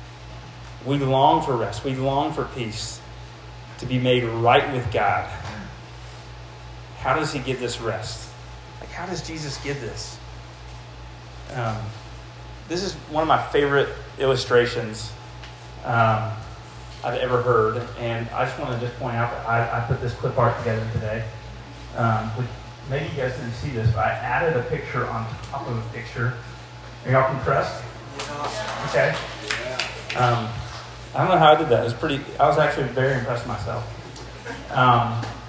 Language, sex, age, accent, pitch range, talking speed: English, male, 30-49, American, 110-140 Hz, 155 wpm